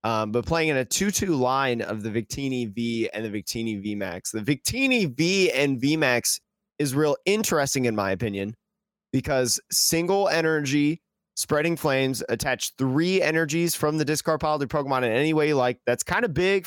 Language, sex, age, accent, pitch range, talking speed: English, male, 20-39, American, 120-155 Hz, 180 wpm